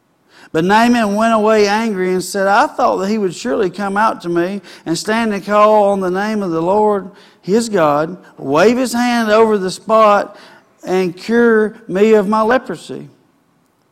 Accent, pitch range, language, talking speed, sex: American, 180-225 Hz, English, 175 wpm, male